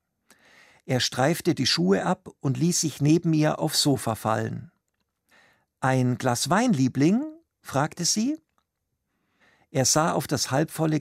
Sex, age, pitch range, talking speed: male, 50-69, 125-180 Hz, 130 wpm